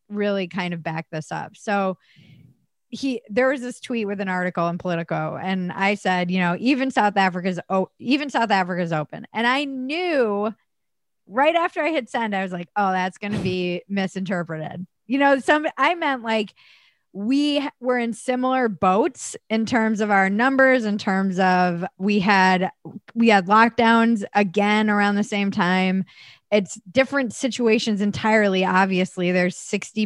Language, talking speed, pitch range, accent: English, 165 wpm, 180-230 Hz, American